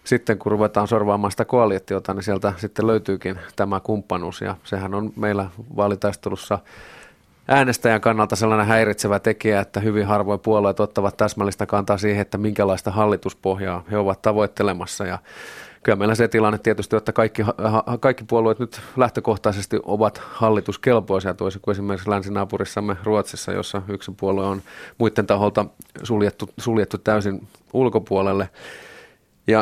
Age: 30-49